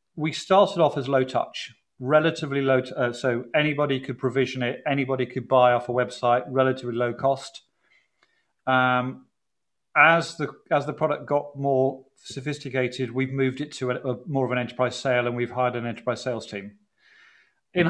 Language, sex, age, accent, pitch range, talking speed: English, male, 40-59, British, 125-145 Hz, 175 wpm